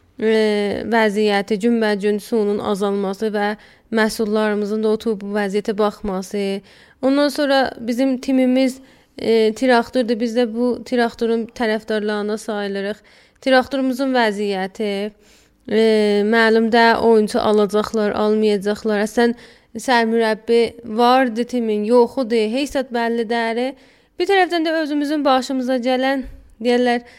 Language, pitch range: Persian, 220-270 Hz